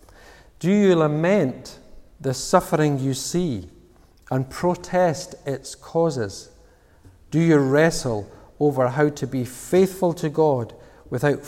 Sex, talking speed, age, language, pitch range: male, 115 wpm, 50-69, English, 130-170 Hz